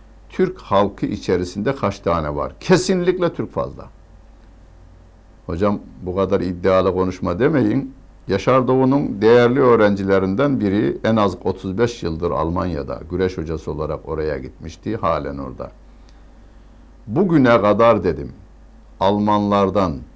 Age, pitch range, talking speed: 60-79, 85-120 Hz, 105 wpm